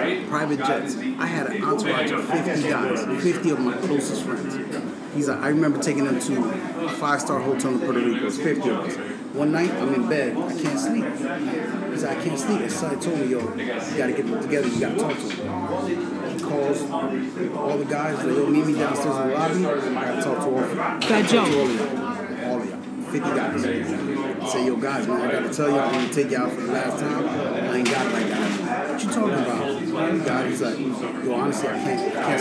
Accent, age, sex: American, 30-49, male